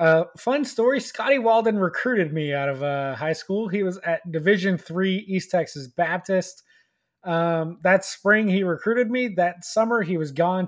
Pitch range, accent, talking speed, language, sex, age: 150-185 Hz, American, 175 wpm, English, male, 20-39